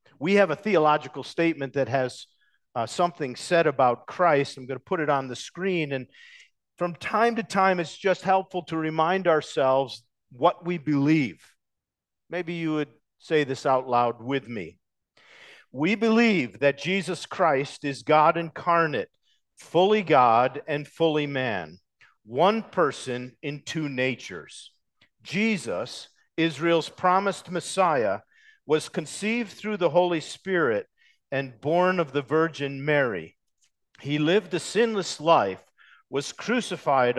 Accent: American